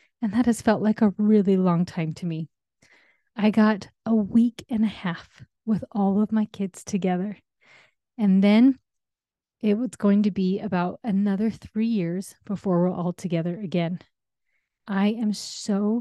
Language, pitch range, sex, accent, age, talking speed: English, 175-215 Hz, female, American, 30-49, 160 wpm